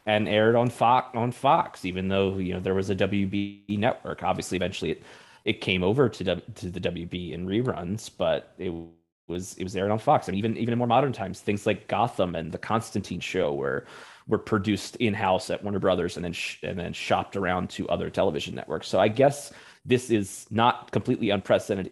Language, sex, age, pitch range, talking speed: English, male, 20-39, 95-115 Hz, 215 wpm